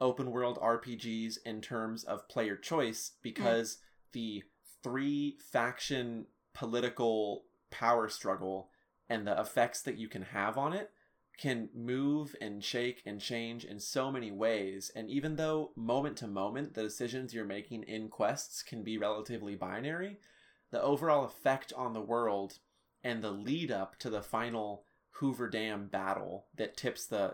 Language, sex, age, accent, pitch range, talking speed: English, male, 20-39, American, 105-125 Hz, 145 wpm